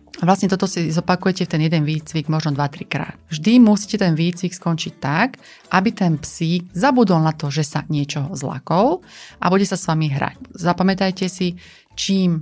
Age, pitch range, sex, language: 30-49, 160-200 Hz, female, Slovak